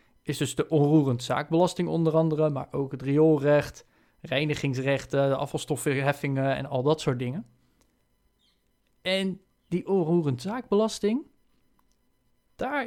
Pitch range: 140-180 Hz